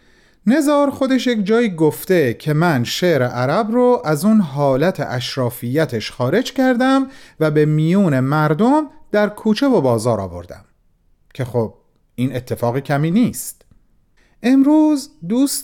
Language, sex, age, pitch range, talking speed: Persian, male, 40-59, 135-215 Hz, 125 wpm